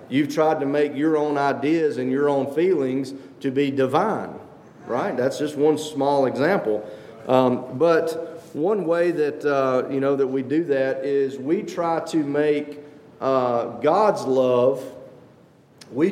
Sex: male